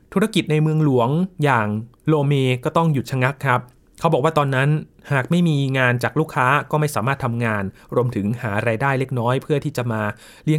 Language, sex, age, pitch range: Thai, male, 20-39, 120-155 Hz